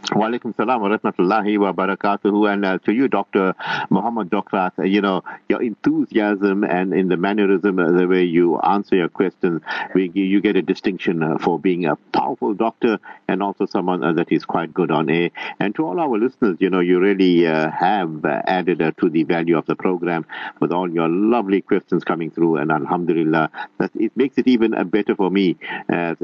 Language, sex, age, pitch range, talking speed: English, male, 50-69, 85-100 Hz, 195 wpm